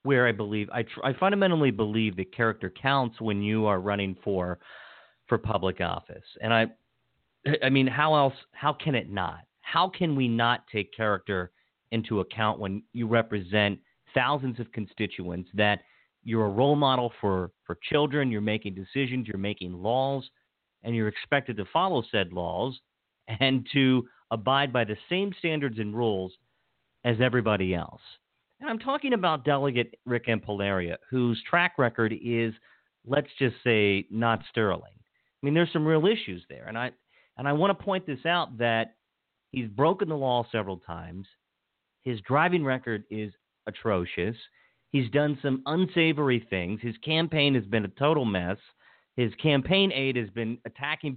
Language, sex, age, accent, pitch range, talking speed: English, male, 40-59, American, 105-140 Hz, 160 wpm